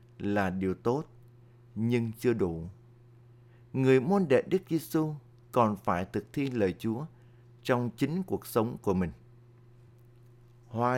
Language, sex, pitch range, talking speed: Vietnamese, male, 110-130 Hz, 130 wpm